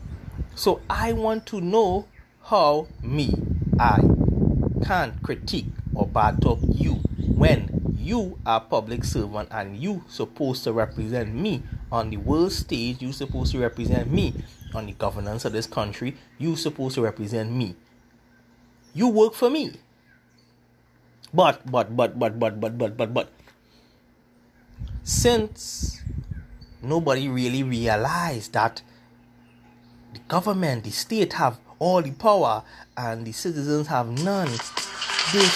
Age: 30-49